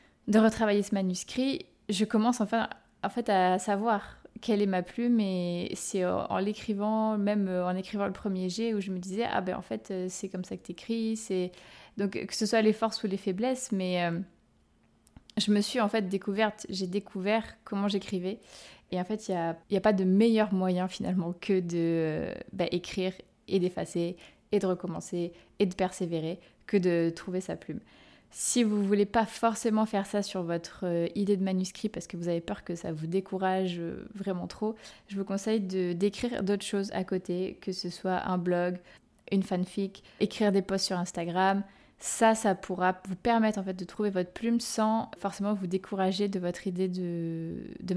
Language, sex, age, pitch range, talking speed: French, female, 20-39, 185-215 Hz, 200 wpm